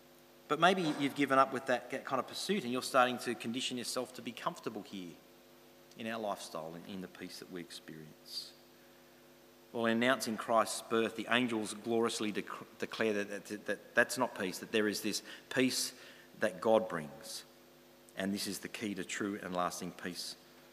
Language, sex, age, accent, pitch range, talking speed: English, male, 40-59, Australian, 100-135 Hz, 185 wpm